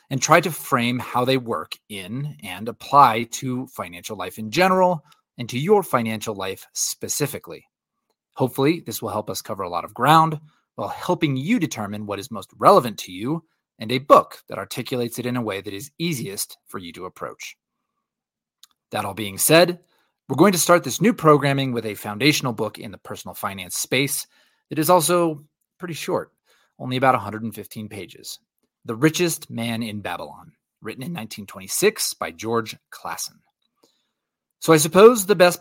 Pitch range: 110-160 Hz